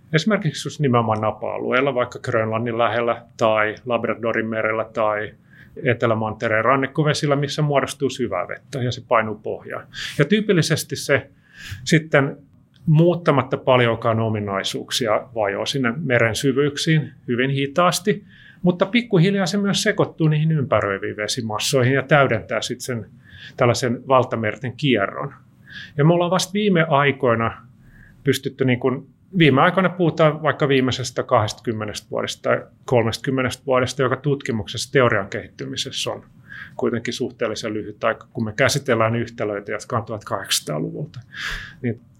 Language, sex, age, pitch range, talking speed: Finnish, male, 30-49, 115-145 Hz, 120 wpm